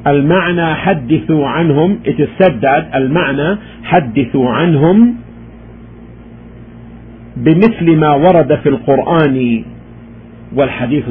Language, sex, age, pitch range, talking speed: English, male, 50-69, 115-185 Hz, 70 wpm